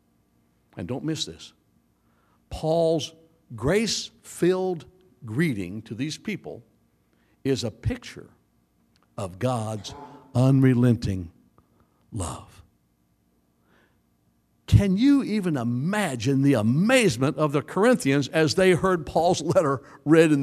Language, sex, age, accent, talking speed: English, male, 60-79, American, 100 wpm